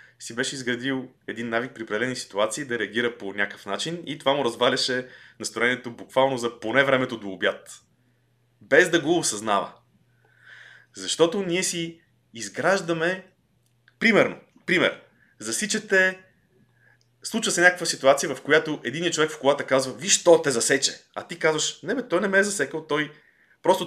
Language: Bulgarian